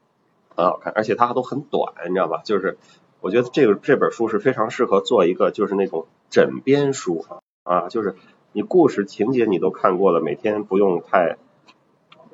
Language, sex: Chinese, male